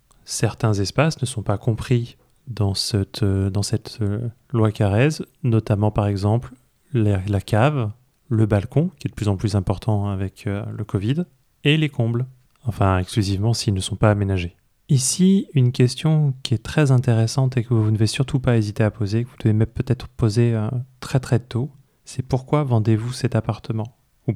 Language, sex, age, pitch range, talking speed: French, male, 20-39, 105-125 Hz, 170 wpm